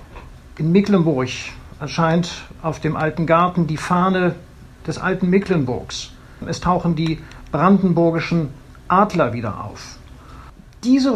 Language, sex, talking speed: German, male, 110 wpm